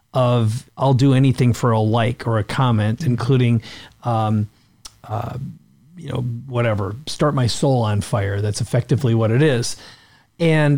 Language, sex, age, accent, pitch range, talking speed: English, male, 40-59, American, 120-140 Hz, 150 wpm